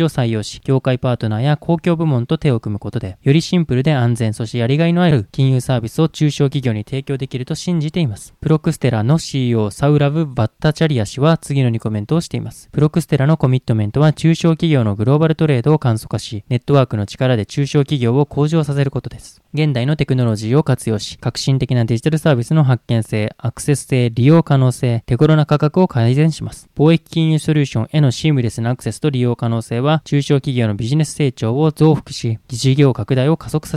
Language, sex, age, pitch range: Japanese, male, 20-39, 120-150 Hz